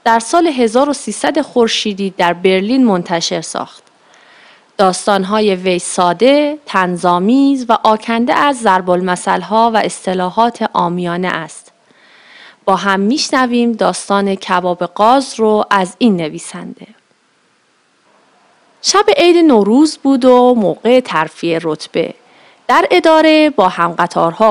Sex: female